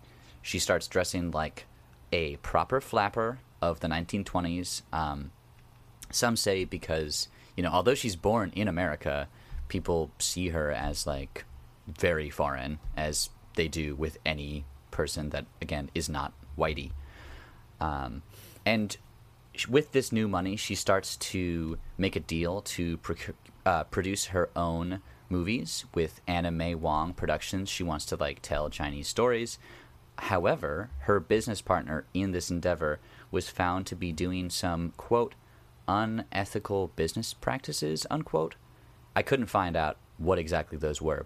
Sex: male